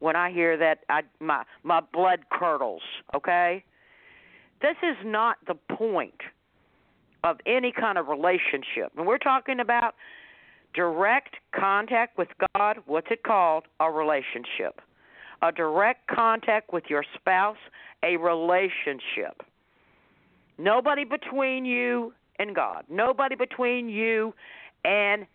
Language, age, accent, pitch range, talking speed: English, 50-69, American, 175-245 Hz, 115 wpm